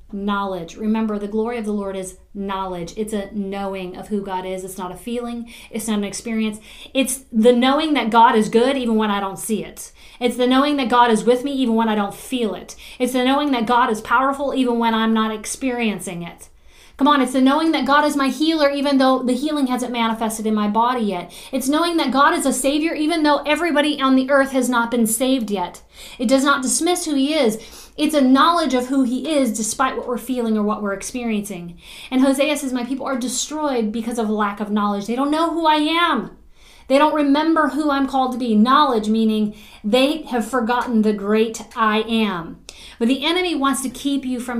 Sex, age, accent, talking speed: female, 40-59, American, 225 wpm